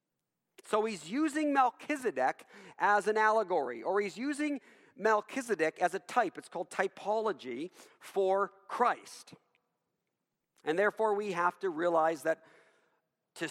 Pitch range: 175-245 Hz